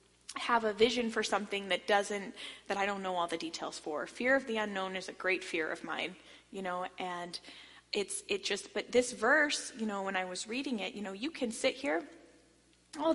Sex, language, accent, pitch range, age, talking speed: female, English, American, 220-285 Hz, 10-29, 220 wpm